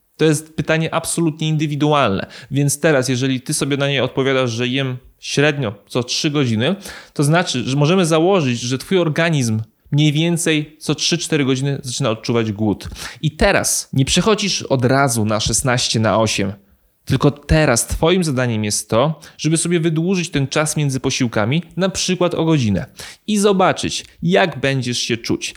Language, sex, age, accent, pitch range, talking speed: Polish, male, 20-39, native, 130-170 Hz, 160 wpm